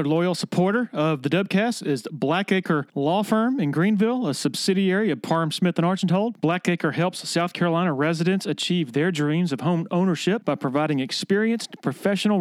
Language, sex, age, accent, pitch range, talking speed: English, male, 40-59, American, 155-190 Hz, 155 wpm